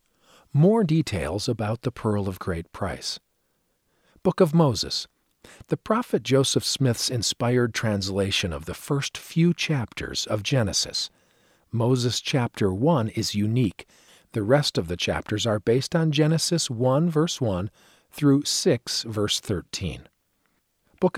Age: 50-69